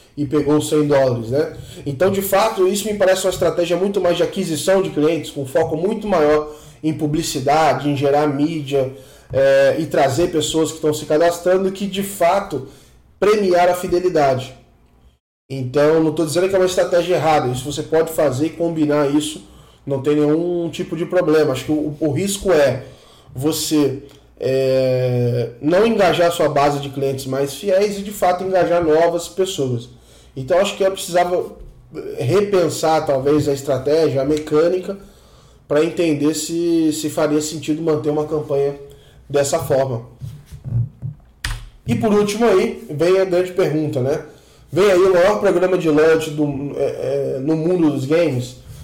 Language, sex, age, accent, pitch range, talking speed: Portuguese, male, 10-29, Brazilian, 140-175 Hz, 160 wpm